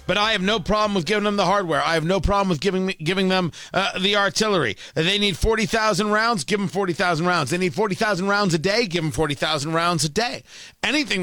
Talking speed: 225 wpm